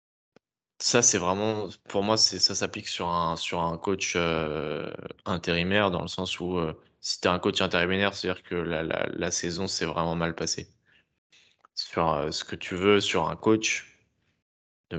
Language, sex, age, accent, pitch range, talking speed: French, male, 20-39, French, 85-100 Hz, 185 wpm